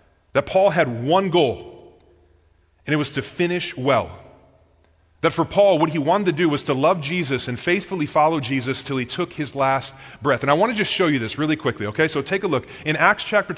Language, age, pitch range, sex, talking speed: English, 30-49, 110-160 Hz, male, 225 wpm